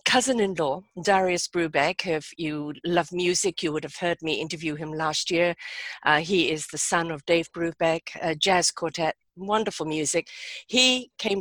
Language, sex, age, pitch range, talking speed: English, female, 50-69, 165-200 Hz, 165 wpm